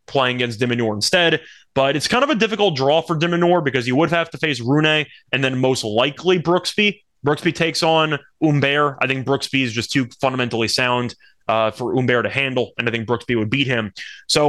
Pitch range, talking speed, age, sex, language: 120-155 Hz, 205 wpm, 20-39, male, English